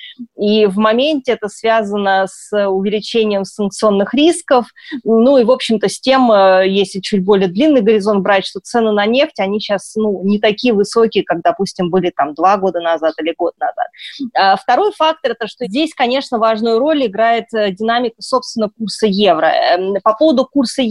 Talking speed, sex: 165 wpm, female